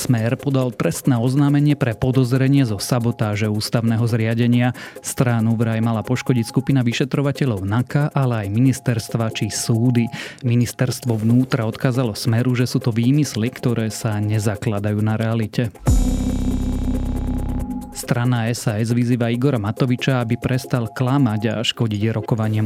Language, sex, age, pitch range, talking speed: Slovak, male, 30-49, 110-130 Hz, 120 wpm